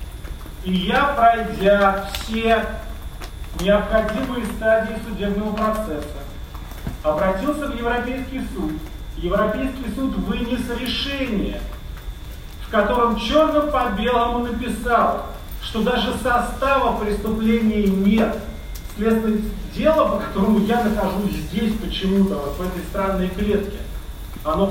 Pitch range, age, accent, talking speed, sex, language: 190-230 Hz, 40-59, native, 90 wpm, male, Russian